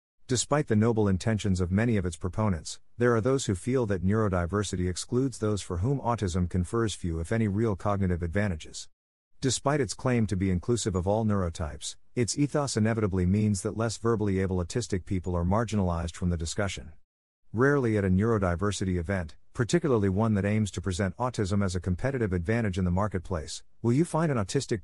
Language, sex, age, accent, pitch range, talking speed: English, male, 50-69, American, 90-115 Hz, 185 wpm